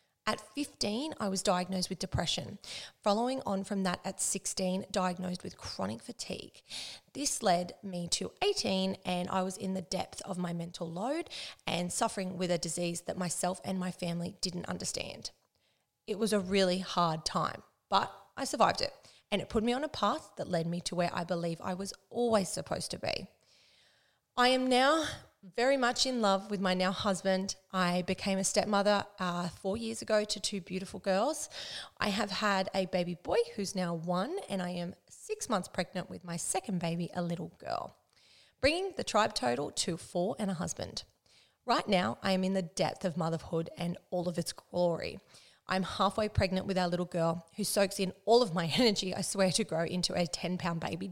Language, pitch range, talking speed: English, 175-205 Hz, 195 wpm